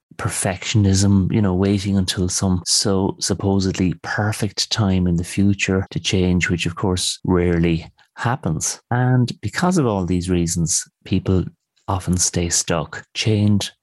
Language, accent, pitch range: English, Irish, 90-115 Hz